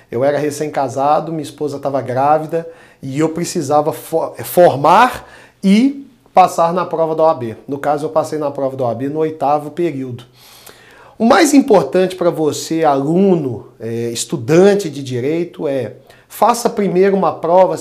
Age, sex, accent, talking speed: 40-59, male, Brazilian, 150 wpm